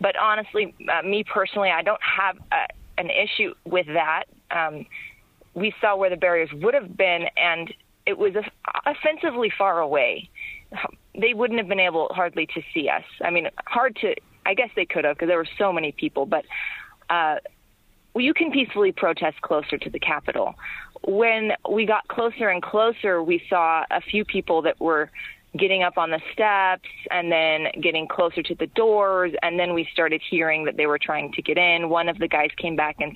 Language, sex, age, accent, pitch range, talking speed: English, female, 30-49, American, 165-220 Hz, 190 wpm